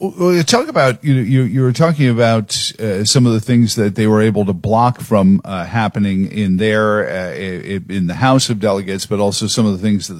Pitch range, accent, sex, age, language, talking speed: 110-125 Hz, American, male, 50-69, English, 235 wpm